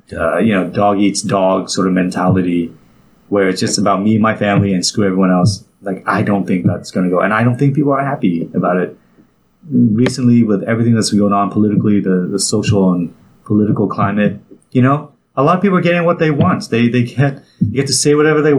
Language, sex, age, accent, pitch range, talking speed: English, male, 30-49, American, 100-135 Hz, 230 wpm